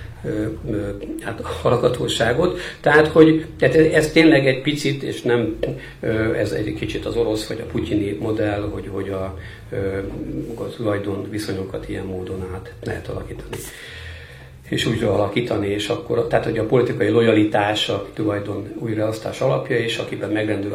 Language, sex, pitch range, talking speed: Hungarian, male, 105-125 Hz, 140 wpm